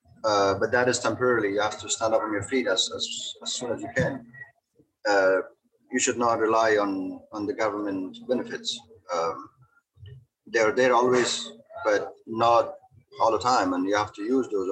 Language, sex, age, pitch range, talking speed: English, male, 30-49, 105-145 Hz, 190 wpm